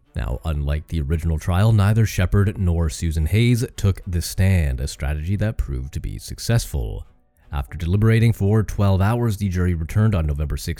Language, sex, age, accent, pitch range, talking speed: English, male, 30-49, American, 75-110 Hz, 165 wpm